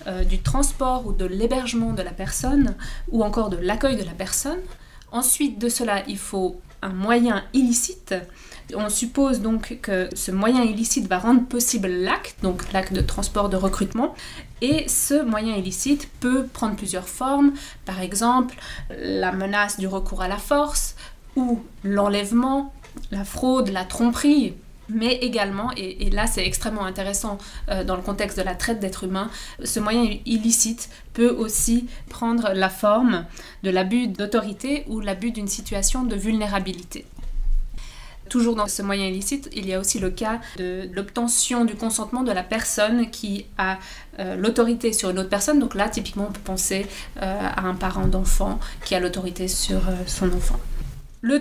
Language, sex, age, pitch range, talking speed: English, female, 20-39, 190-240 Hz, 160 wpm